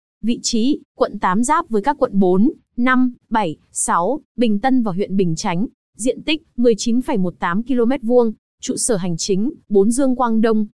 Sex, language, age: female, Vietnamese, 20-39